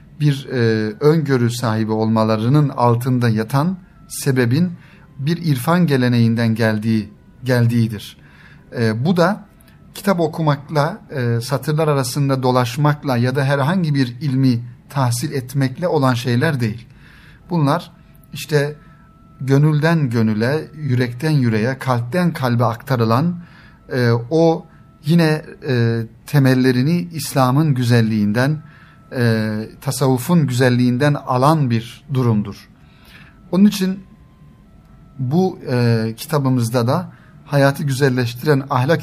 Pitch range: 120-155 Hz